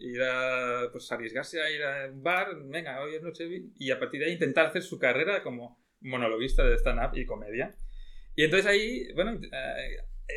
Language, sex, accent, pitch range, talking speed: Spanish, male, Spanish, 130-190 Hz, 190 wpm